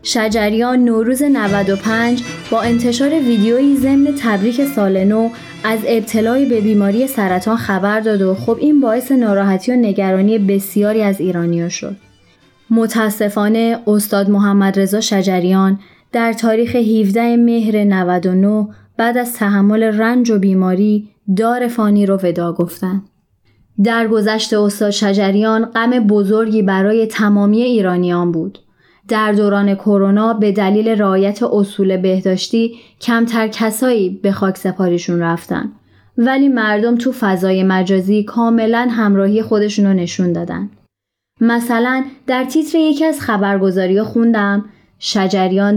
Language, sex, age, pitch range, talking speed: Persian, female, 20-39, 195-230 Hz, 120 wpm